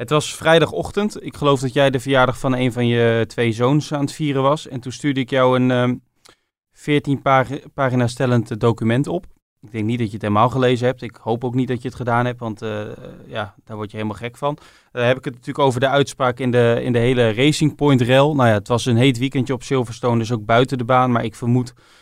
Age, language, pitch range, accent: 20-39, Dutch, 115-135 Hz, Dutch